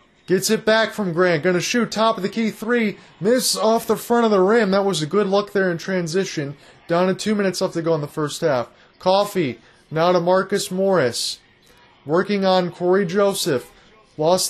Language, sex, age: English, male, 20-39